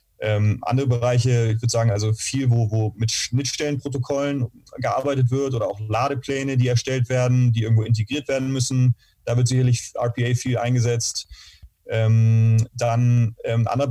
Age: 30-49